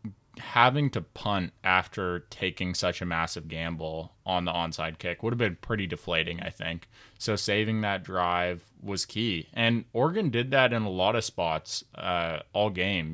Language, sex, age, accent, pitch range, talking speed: English, male, 20-39, American, 90-110 Hz, 175 wpm